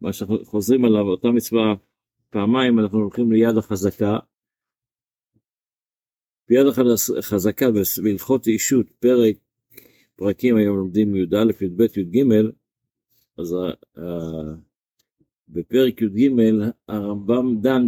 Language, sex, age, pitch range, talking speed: Hebrew, male, 50-69, 105-125 Hz, 95 wpm